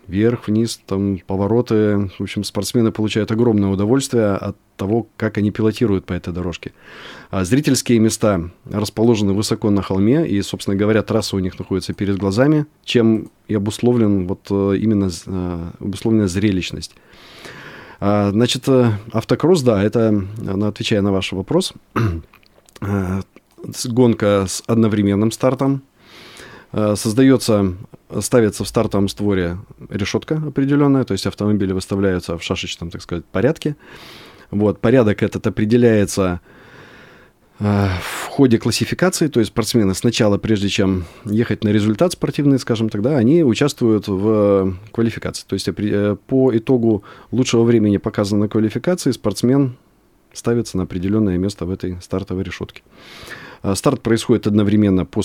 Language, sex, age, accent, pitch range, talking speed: Russian, male, 20-39, native, 100-120 Hz, 120 wpm